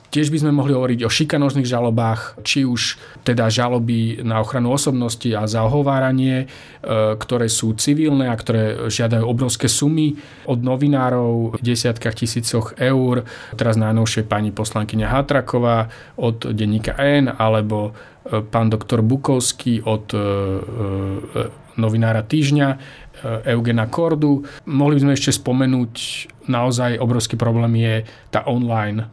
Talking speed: 120 wpm